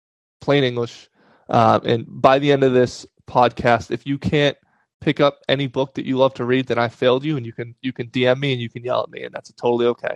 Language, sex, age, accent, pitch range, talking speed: English, male, 20-39, American, 115-145 Hz, 260 wpm